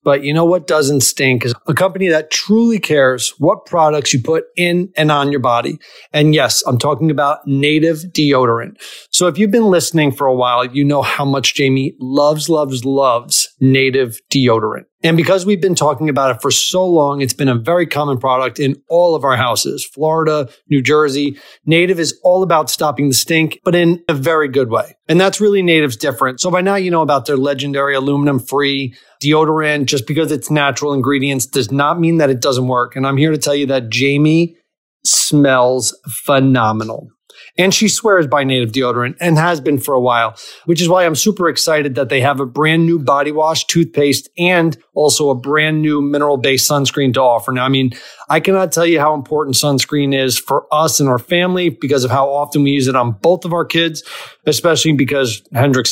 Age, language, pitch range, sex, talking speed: 30-49, English, 135-165 Hz, male, 200 wpm